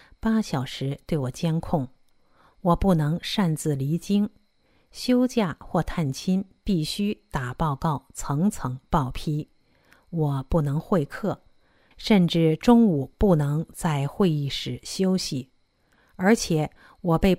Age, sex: 50-69, female